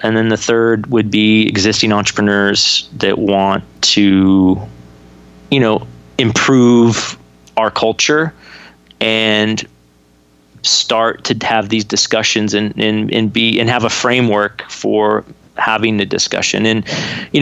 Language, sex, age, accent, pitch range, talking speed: English, male, 30-49, American, 105-115 Hz, 125 wpm